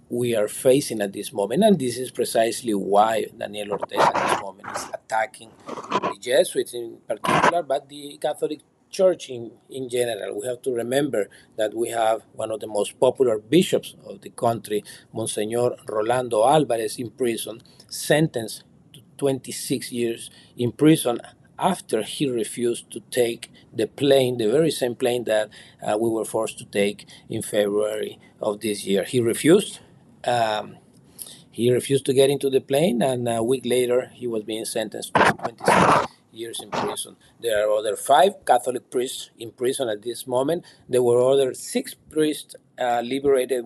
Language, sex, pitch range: English, male, 110-135 Hz